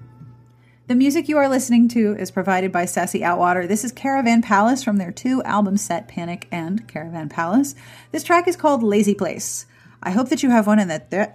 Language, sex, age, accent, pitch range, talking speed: English, female, 40-59, American, 180-255 Hz, 200 wpm